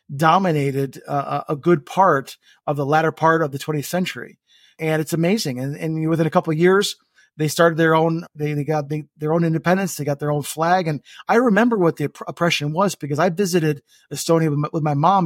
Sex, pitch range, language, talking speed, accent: male, 150-175 Hz, English, 210 wpm, American